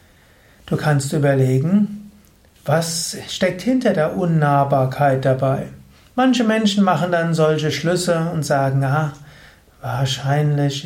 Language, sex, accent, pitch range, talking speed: German, male, German, 135-185 Hz, 105 wpm